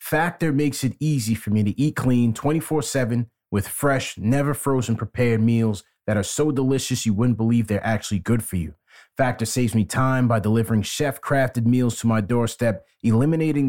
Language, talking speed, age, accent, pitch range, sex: English, 170 wpm, 30-49, American, 115-140 Hz, male